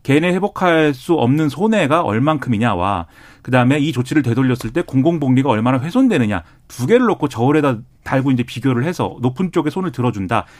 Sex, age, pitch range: male, 40-59, 120-175 Hz